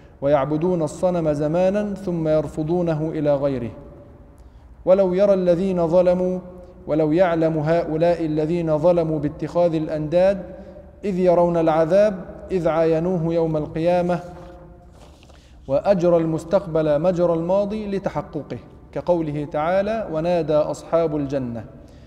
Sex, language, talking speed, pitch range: male, Arabic, 95 wpm, 155-185 Hz